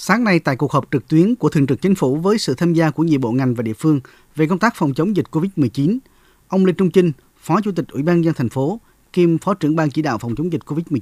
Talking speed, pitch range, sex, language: 285 wpm, 145-185 Hz, male, Vietnamese